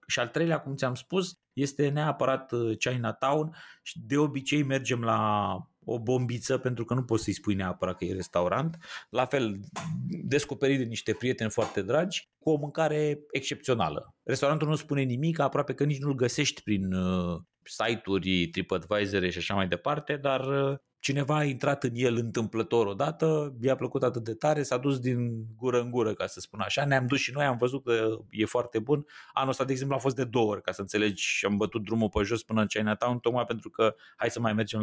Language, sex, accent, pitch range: Romanian, male, native, 105-140 Hz